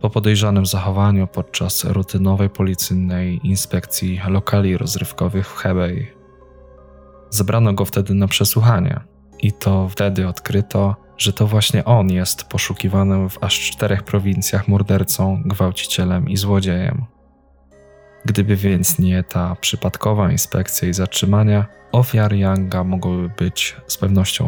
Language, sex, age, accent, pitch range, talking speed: Polish, male, 20-39, native, 95-105 Hz, 120 wpm